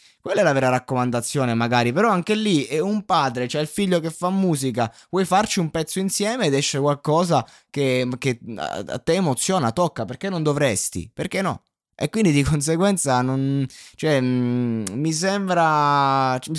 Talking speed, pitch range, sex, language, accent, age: 165 wpm, 110-150 Hz, male, Italian, native, 20-39